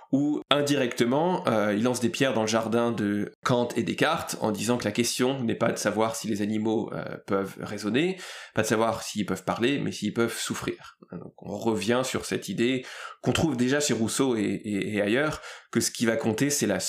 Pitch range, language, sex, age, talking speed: 105-130 Hz, French, male, 20-39, 215 wpm